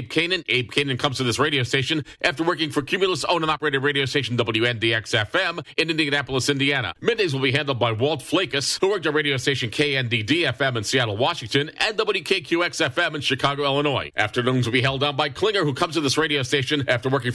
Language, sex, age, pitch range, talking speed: English, male, 40-59, 115-150 Hz, 200 wpm